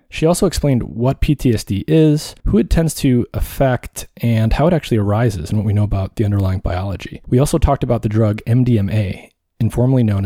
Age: 20-39